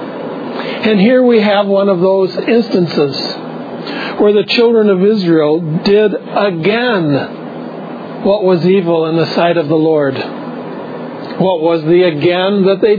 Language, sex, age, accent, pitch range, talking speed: English, male, 60-79, American, 170-225 Hz, 140 wpm